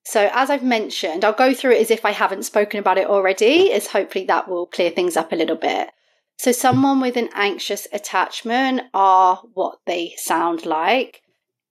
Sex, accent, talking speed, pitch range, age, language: female, British, 190 wpm, 185-230 Hz, 30-49, English